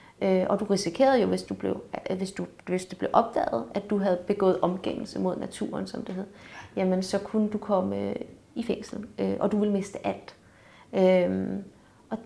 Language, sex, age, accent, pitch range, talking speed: Danish, female, 30-49, native, 195-245 Hz, 175 wpm